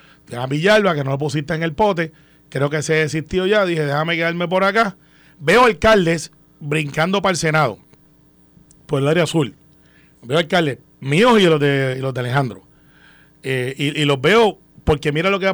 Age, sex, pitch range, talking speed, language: 40-59, male, 150-180 Hz, 180 wpm, Spanish